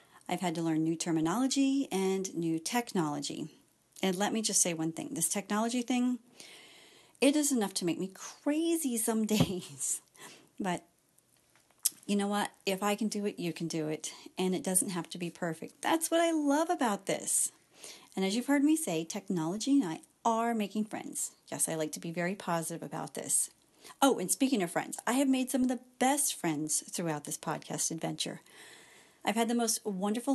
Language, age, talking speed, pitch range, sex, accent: English, 40-59, 190 wpm, 170-240 Hz, female, American